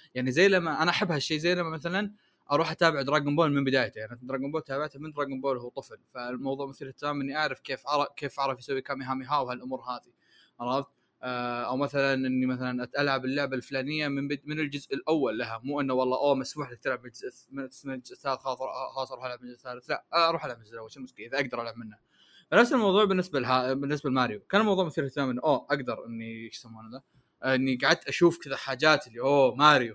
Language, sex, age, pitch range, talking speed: Arabic, male, 20-39, 130-175 Hz, 200 wpm